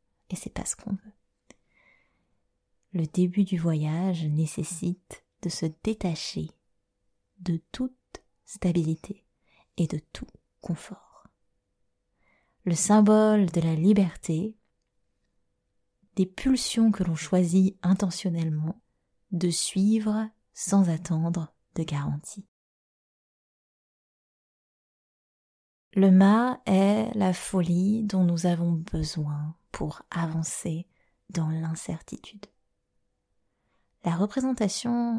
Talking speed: 90 wpm